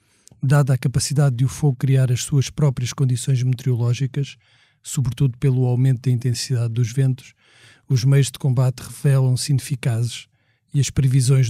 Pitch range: 125-140 Hz